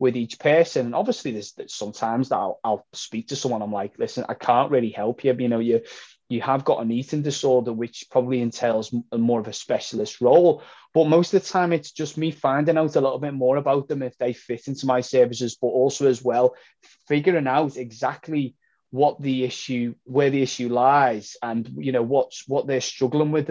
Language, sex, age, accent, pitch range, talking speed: English, male, 20-39, British, 120-150 Hz, 210 wpm